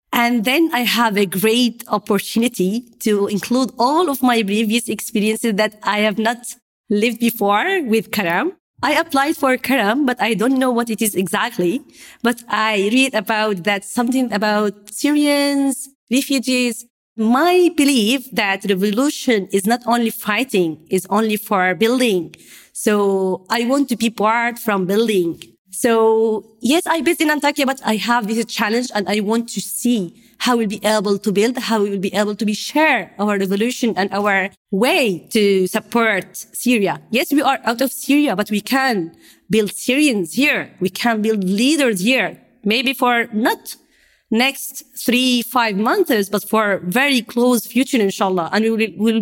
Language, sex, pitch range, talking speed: English, female, 210-255 Hz, 165 wpm